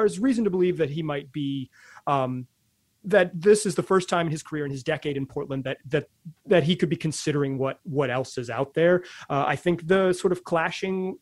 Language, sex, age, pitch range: English, male, 30-49, 145-185 Hz